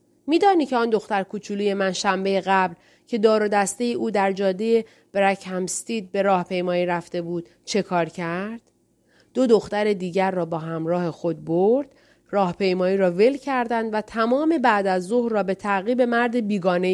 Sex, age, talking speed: female, 30-49, 165 wpm